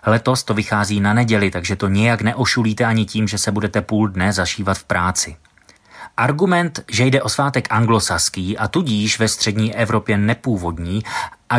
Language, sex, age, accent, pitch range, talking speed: Czech, male, 30-49, native, 100-120 Hz, 165 wpm